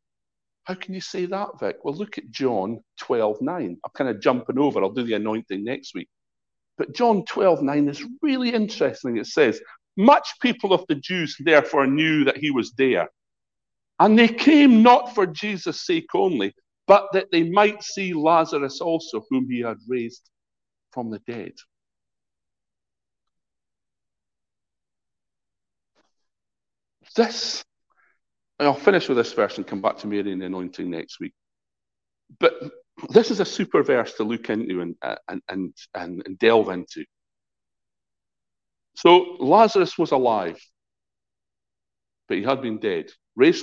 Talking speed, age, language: 150 wpm, 50-69, English